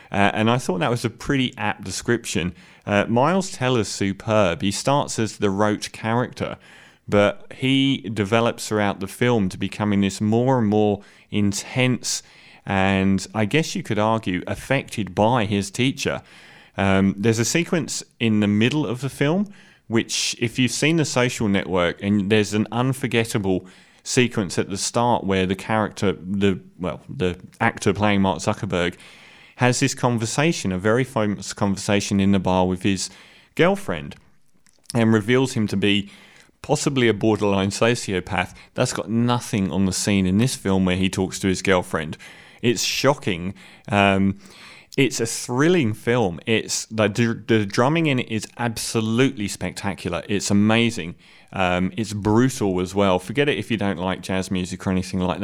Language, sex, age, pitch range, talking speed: English, male, 30-49, 95-120 Hz, 160 wpm